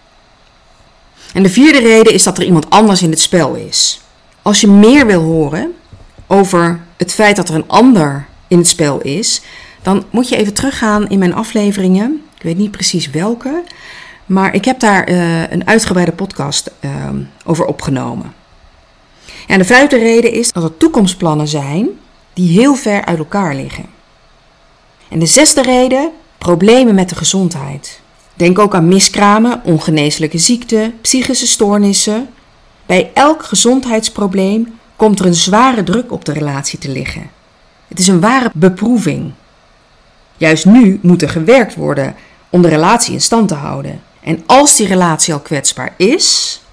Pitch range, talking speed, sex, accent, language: 165-230 Hz, 155 wpm, female, Dutch, Dutch